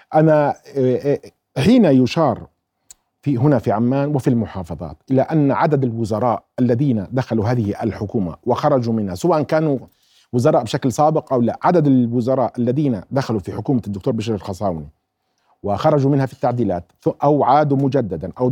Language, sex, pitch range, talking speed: Arabic, male, 120-155 Hz, 140 wpm